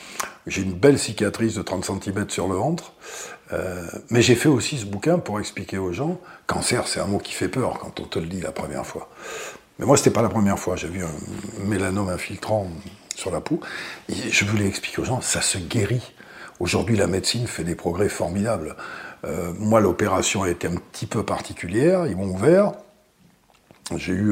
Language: French